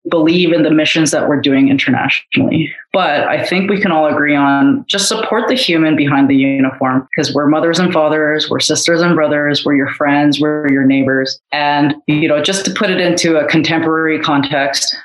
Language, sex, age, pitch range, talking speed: English, female, 20-39, 140-165 Hz, 195 wpm